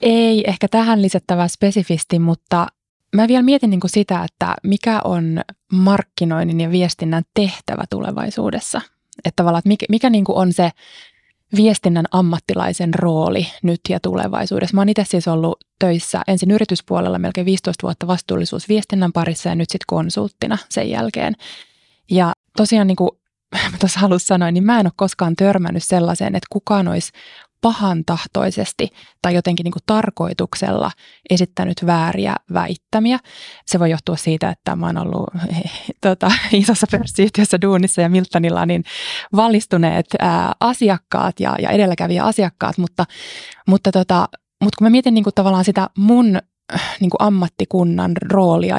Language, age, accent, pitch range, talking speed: Finnish, 20-39, native, 175-205 Hz, 140 wpm